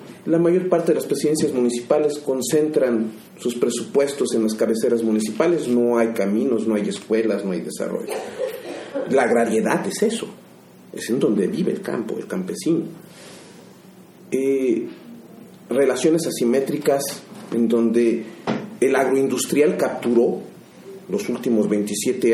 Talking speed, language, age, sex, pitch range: 125 wpm, Spanish, 40-59, male, 115-180 Hz